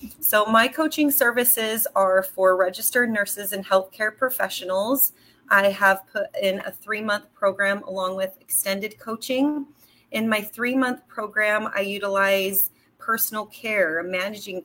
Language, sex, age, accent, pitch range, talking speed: English, female, 30-49, American, 185-215 Hz, 125 wpm